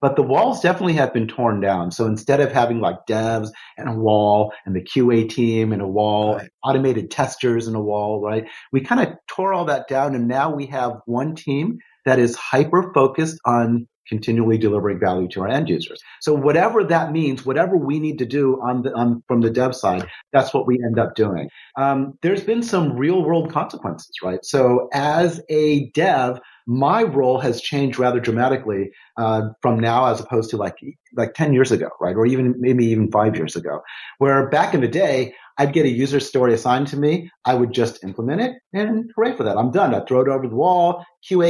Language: English